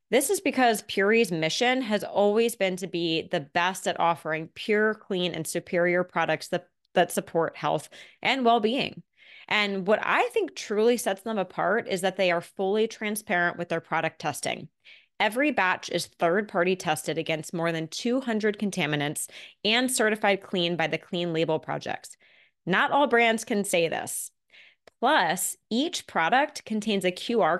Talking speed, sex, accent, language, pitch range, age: 160 wpm, female, American, English, 175-230 Hz, 20-39